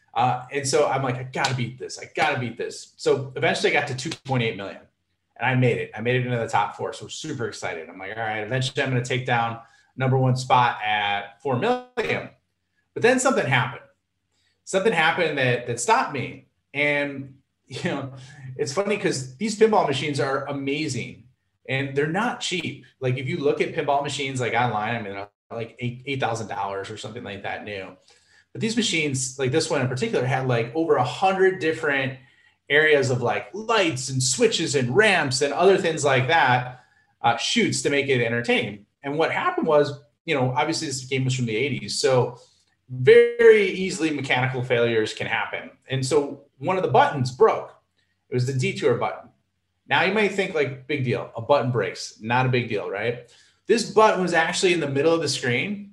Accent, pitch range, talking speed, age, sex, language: American, 125-160 Hz, 200 wpm, 30-49, male, English